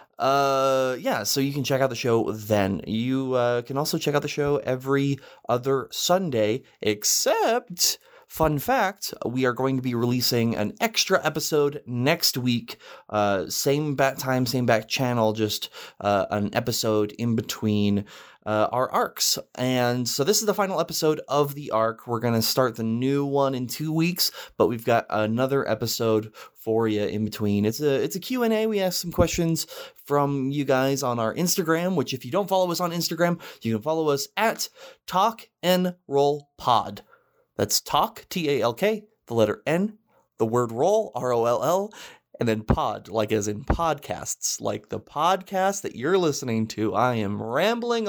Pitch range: 115-180 Hz